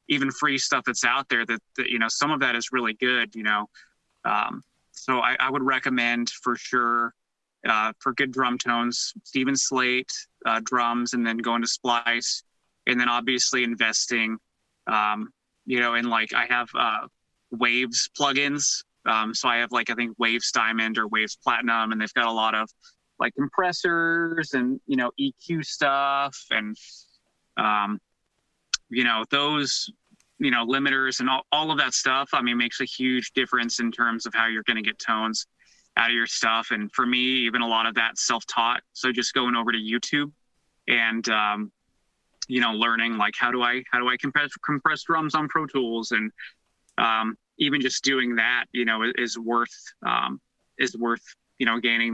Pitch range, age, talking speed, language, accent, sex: 115-130 Hz, 20-39, 185 wpm, English, American, male